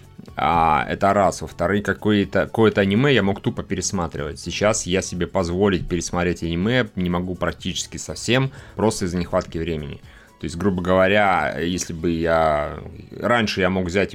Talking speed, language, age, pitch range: 155 wpm, Russian, 30-49, 85-100 Hz